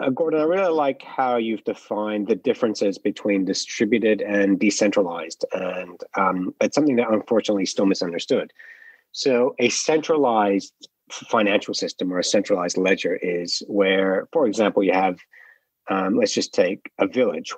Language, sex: English, male